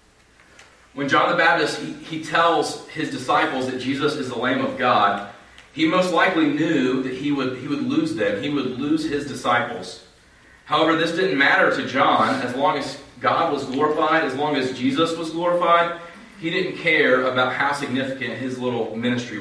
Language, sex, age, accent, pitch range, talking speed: English, male, 30-49, American, 110-150 Hz, 180 wpm